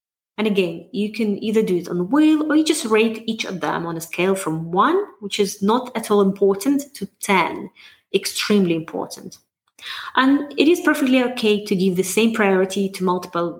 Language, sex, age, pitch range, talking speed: English, female, 30-49, 180-250 Hz, 195 wpm